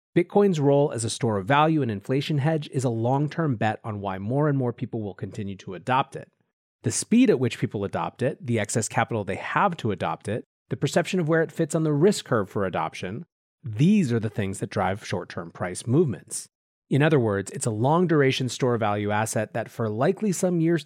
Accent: American